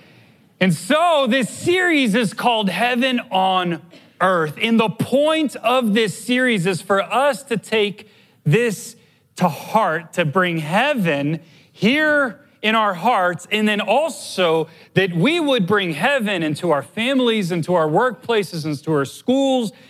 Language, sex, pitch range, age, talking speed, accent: English, male, 175-255 Hz, 30-49, 140 wpm, American